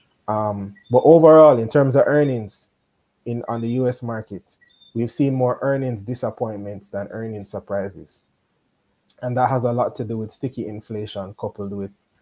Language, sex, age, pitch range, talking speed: English, male, 20-39, 100-120 Hz, 155 wpm